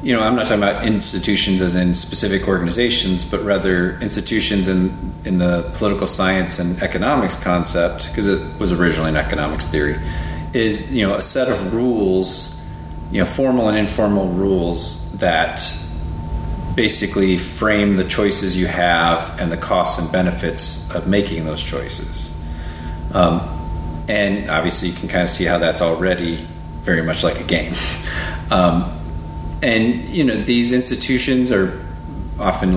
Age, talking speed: 30-49, 150 wpm